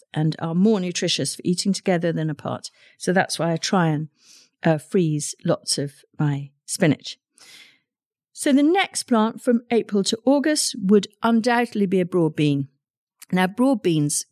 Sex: female